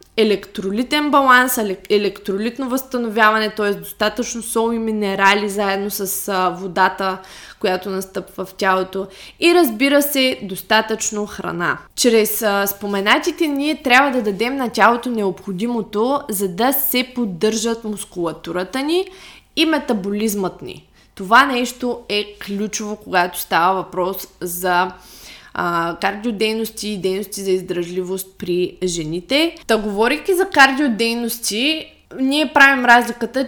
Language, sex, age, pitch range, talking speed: Bulgarian, female, 20-39, 195-250 Hz, 110 wpm